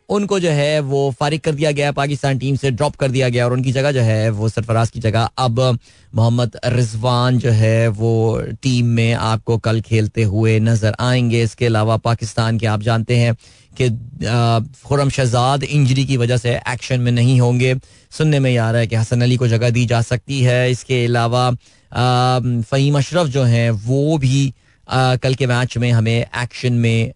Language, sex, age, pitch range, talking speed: Hindi, male, 30-49, 115-140 Hz, 190 wpm